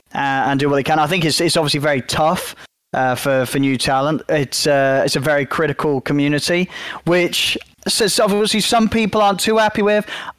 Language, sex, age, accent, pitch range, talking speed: English, male, 20-39, British, 140-185 Hz, 195 wpm